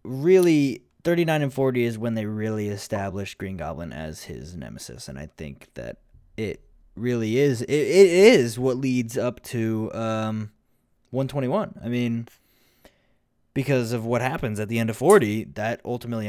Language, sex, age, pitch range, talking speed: English, male, 20-39, 110-140 Hz, 160 wpm